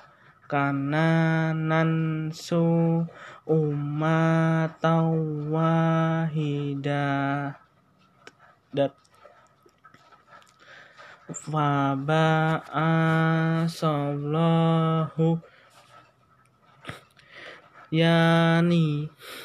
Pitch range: 155-170 Hz